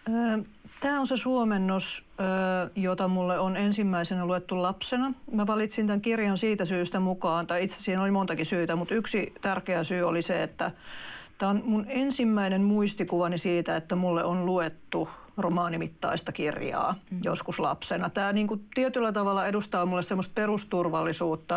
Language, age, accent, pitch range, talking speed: Finnish, 40-59, native, 170-200 Hz, 145 wpm